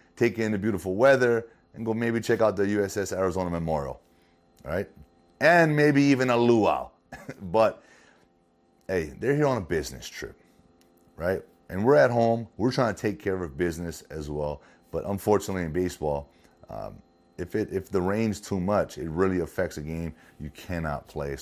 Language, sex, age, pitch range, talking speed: English, male, 30-49, 85-120 Hz, 175 wpm